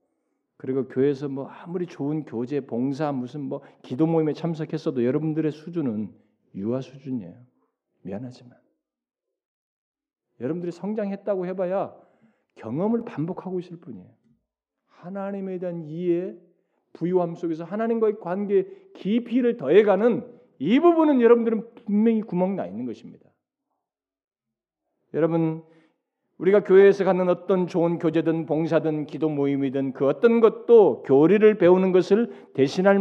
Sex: male